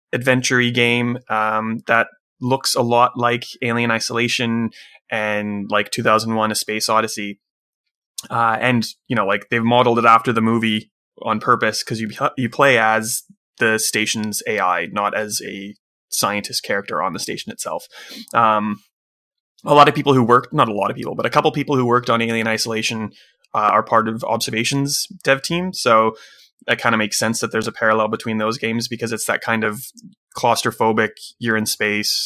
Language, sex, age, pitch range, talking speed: English, male, 20-39, 110-120 Hz, 180 wpm